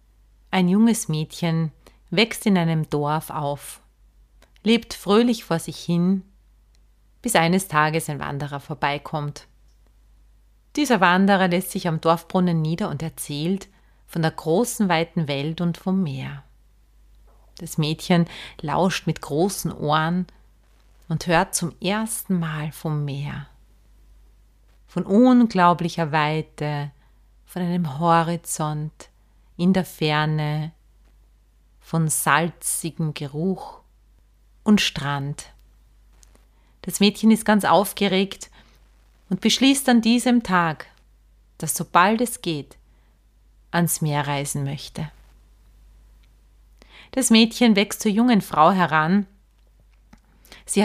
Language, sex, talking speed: German, female, 105 wpm